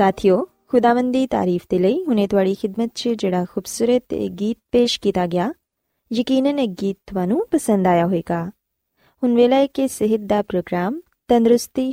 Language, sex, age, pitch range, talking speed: Punjabi, female, 20-39, 190-270 Hz, 140 wpm